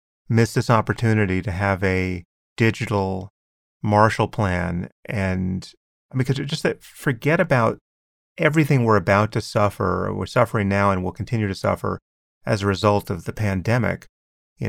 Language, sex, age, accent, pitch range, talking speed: English, male, 30-49, American, 95-125 Hz, 145 wpm